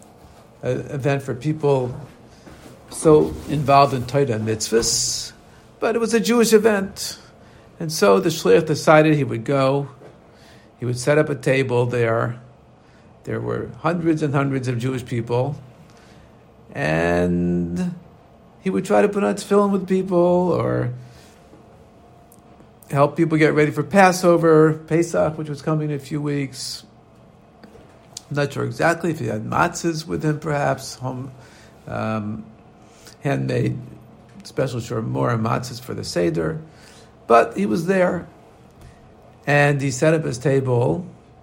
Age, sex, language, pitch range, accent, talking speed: 50-69, male, English, 115-155 Hz, American, 135 wpm